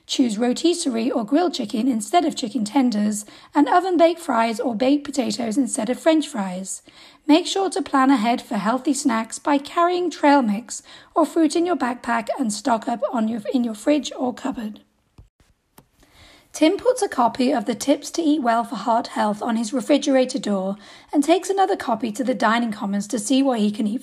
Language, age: English, 40-59